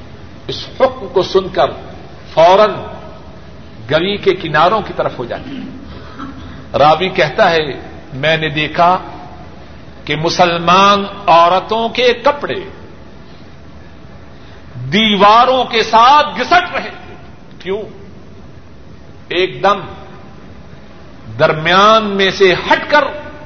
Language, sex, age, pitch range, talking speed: Urdu, male, 50-69, 170-230 Hz, 95 wpm